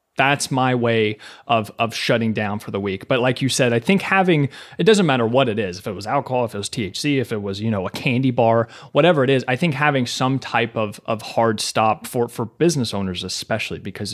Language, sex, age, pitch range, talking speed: English, male, 30-49, 110-135 Hz, 240 wpm